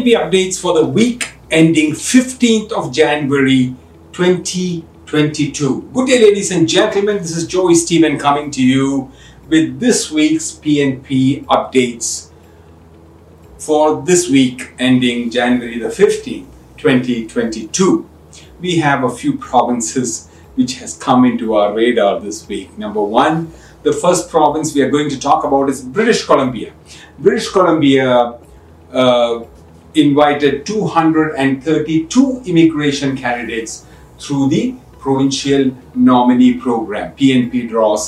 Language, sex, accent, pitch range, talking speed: English, male, Indian, 125-180 Hz, 125 wpm